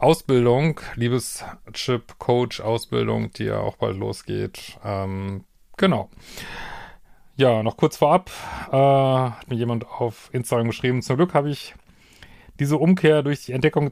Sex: male